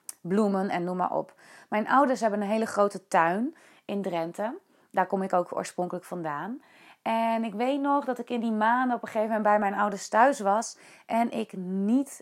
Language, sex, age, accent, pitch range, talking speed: Dutch, female, 30-49, Dutch, 185-225 Hz, 200 wpm